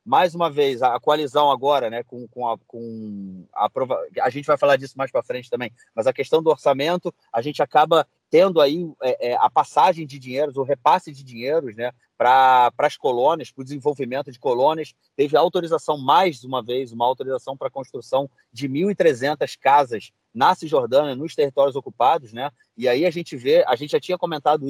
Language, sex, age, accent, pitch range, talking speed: Portuguese, male, 30-49, Brazilian, 130-175 Hz, 195 wpm